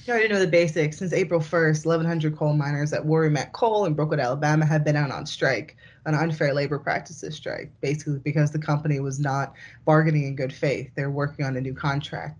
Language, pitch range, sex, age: English, 140-170 Hz, female, 20-39